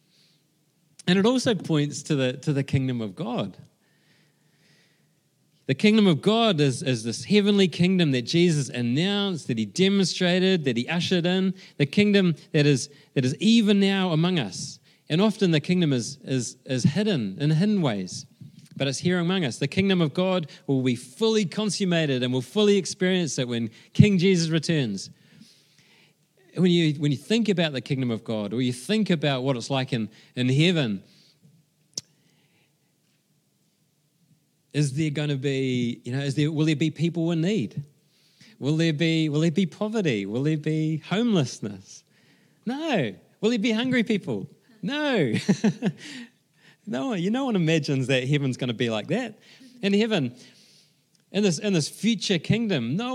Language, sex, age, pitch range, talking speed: English, male, 40-59, 140-195 Hz, 165 wpm